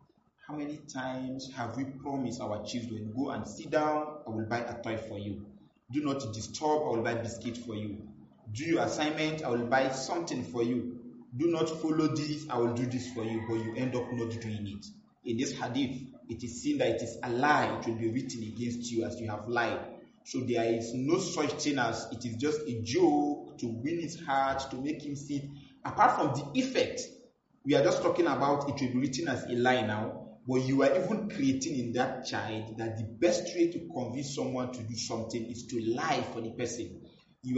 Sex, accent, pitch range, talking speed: male, Nigerian, 115-145 Hz, 220 wpm